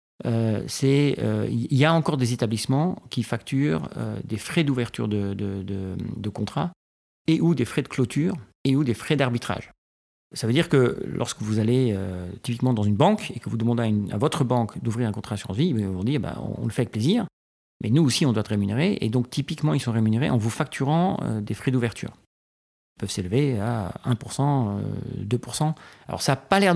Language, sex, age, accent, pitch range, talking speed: French, male, 40-59, French, 110-150 Hz, 220 wpm